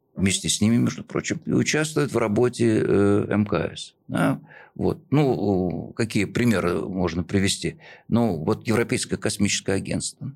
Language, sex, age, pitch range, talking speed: Russian, male, 50-69, 90-110 Hz, 125 wpm